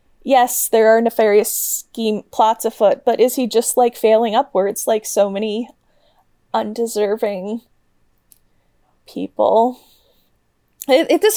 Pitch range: 205-250 Hz